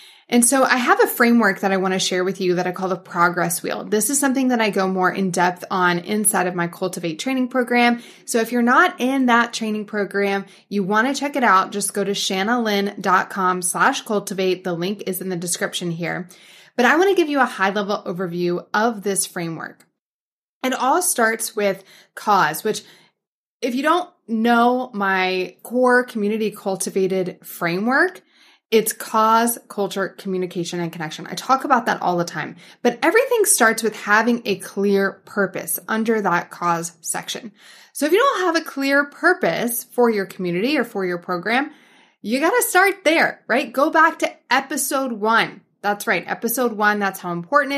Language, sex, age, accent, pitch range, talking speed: English, female, 20-39, American, 185-250 Hz, 185 wpm